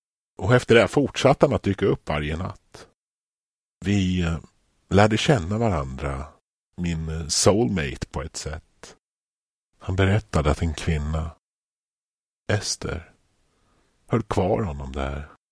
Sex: male